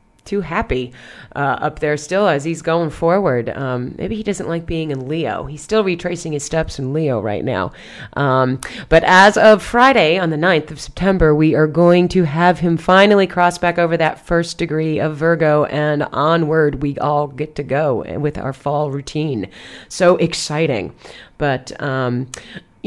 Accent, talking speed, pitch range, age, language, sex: American, 175 wpm, 150-180 Hz, 30-49, English, female